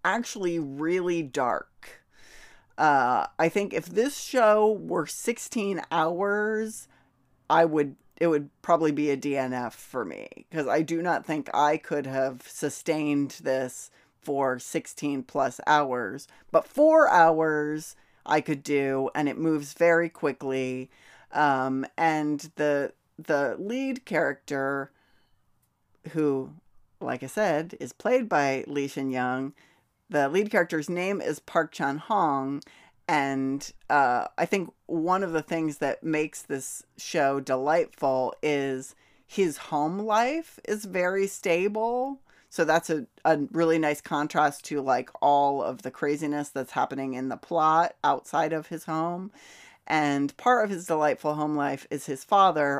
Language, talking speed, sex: English, 140 wpm, female